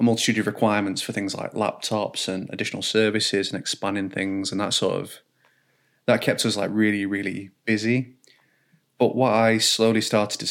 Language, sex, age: English, male, 30-49